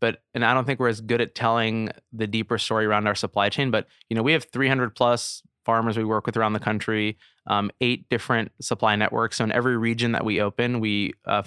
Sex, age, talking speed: male, 20-39, 235 wpm